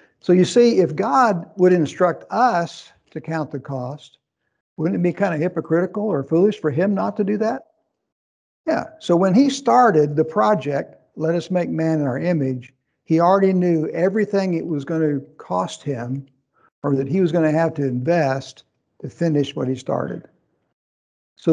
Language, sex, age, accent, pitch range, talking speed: English, male, 60-79, American, 140-175 Hz, 180 wpm